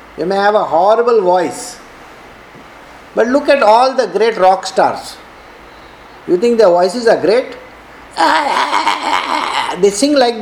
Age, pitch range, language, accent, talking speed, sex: 50-69, 200-260 Hz, English, Indian, 130 wpm, male